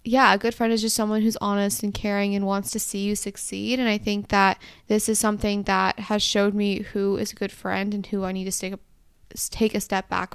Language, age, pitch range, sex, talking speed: English, 20-39, 195-215 Hz, female, 245 wpm